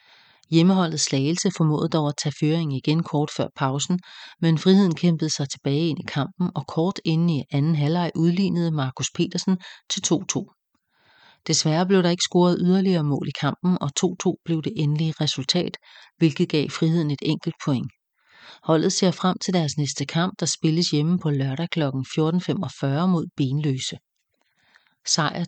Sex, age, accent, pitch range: female, 40-59, Danish, 150-175 Hz